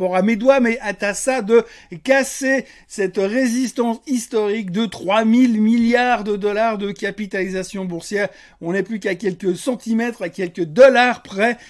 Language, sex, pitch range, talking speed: French, male, 185-230 Hz, 155 wpm